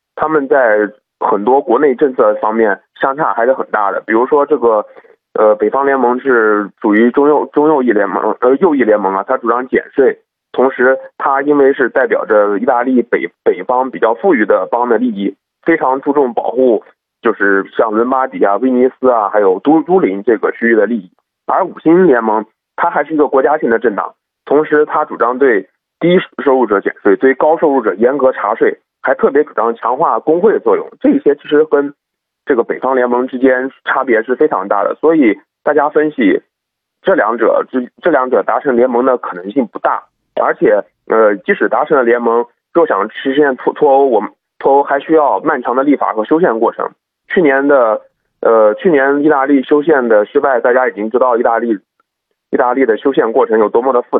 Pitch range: 120-160 Hz